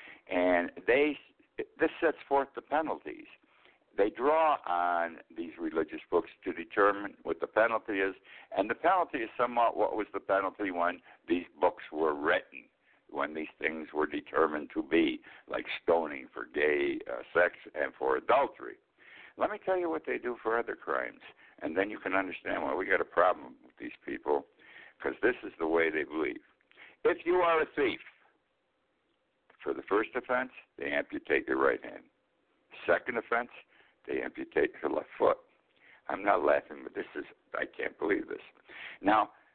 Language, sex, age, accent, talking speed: English, male, 60-79, American, 170 wpm